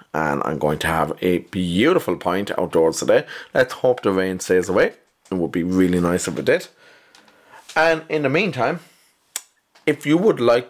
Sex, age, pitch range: male, 30-49, 95-125 Hz